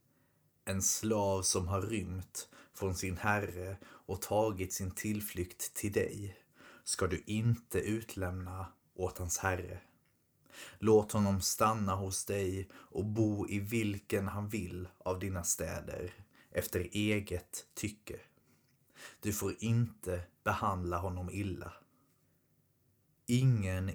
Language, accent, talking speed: Swedish, native, 115 wpm